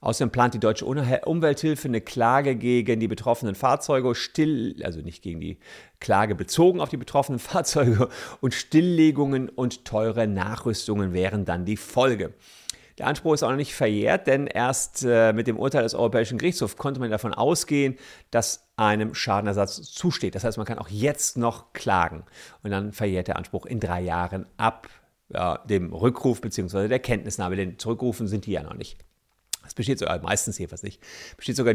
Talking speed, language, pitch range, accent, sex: 175 wpm, German, 105-135 Hz, German, male